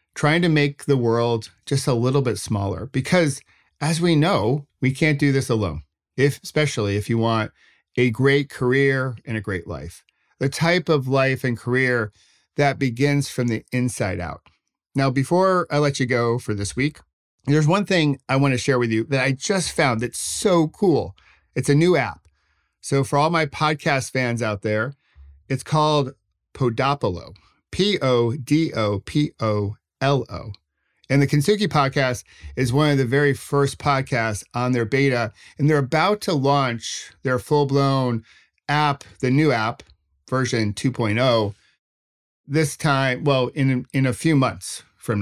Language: English